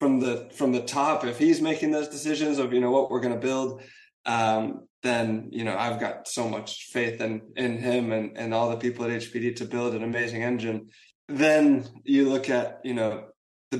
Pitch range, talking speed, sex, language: 115-130 Hz, 215 wpm, male, English